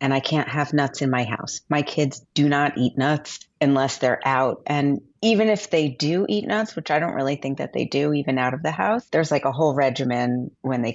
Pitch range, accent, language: 135-175 Hz, American, English